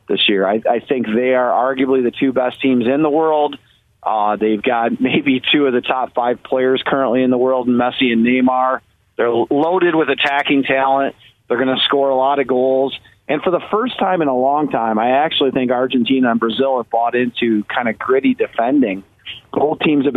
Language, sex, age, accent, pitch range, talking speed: English, male, 40-59, American, 120-140 Hz, 210 wpm